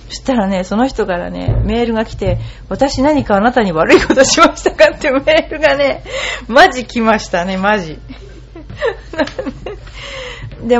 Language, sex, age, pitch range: Japanese, female, 40-59, 190-300 Hz